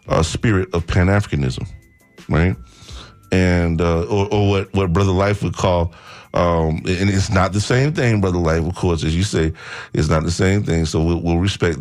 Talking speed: 200 wpm